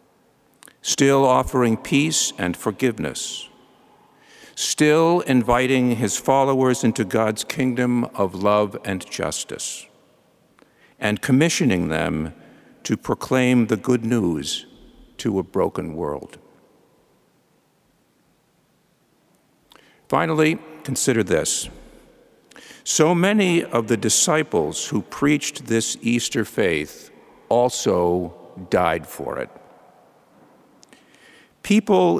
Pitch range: 110-150 Hz